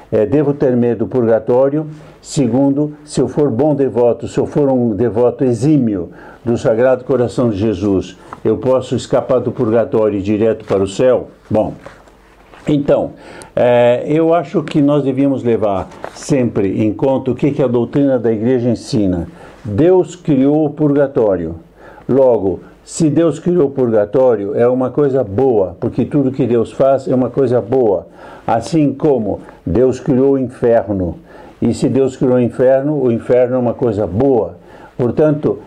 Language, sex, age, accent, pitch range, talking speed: Portuguese, male, 60-79, Brazilian, 115-145 Hz, 155 wpm